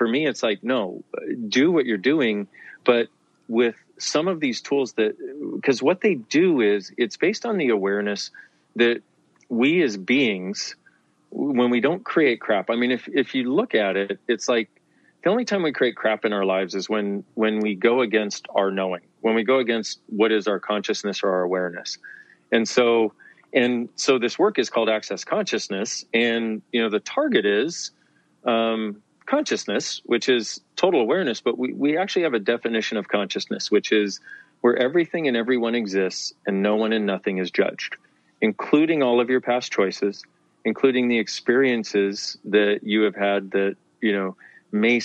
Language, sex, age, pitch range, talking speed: English, male, 40-59, 105-125 Hz, 180 wpm